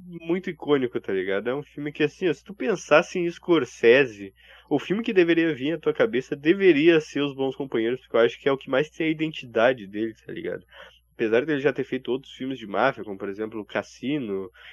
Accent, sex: Brazilian, male